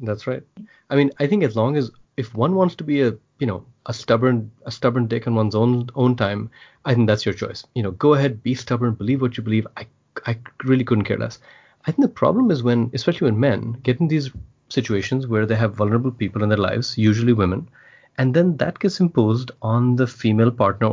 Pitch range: 110-130 Hz